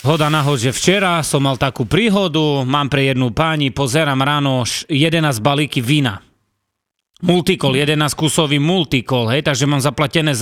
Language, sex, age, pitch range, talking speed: Slovak, male, 30-49, 135-185 Hz, 145 wpm